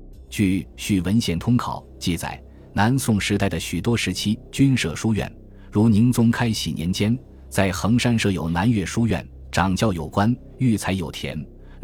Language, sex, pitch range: Chinese, male, 85-115 Hz